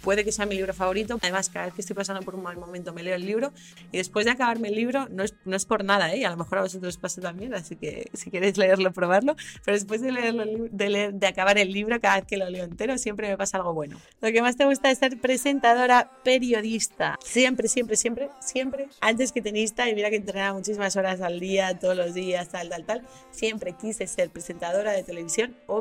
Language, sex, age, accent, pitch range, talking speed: Spanish, female, 30-49, Spanish, 180-225 Hz, 245 wpm